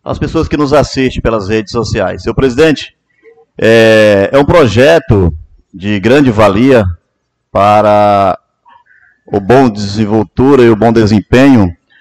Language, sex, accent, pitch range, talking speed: Portuguese, male, Brazilian, 115-155 Hz, 125 wpm